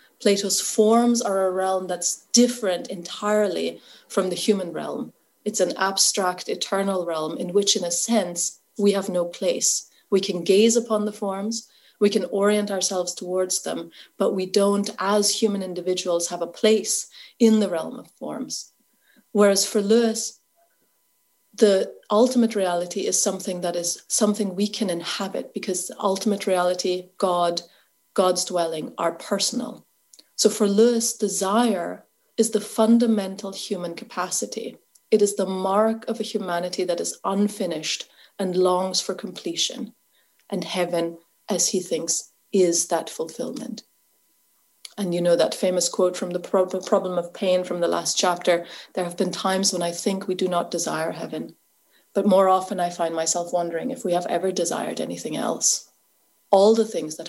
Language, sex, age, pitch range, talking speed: English, female, 30-49, 175-210 Hz, 155 wpm